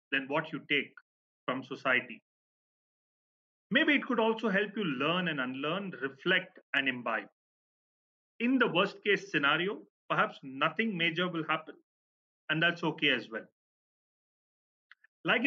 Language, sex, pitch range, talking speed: English, male, 160-220 Hz, 130 wpm